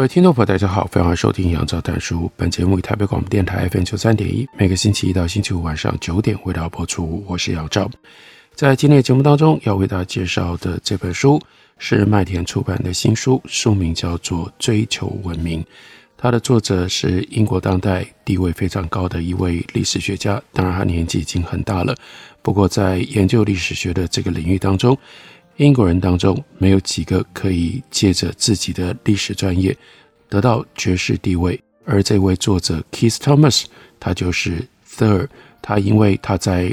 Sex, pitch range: male, 90-110 Hz